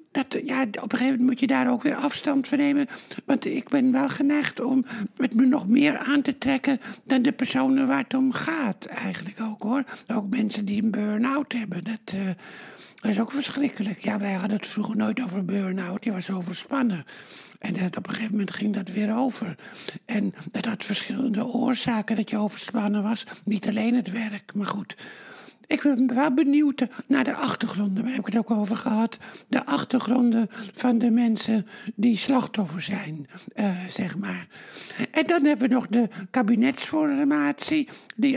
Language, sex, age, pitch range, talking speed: Dutch, male, 60-79, 210-265 Hz, 185 wpm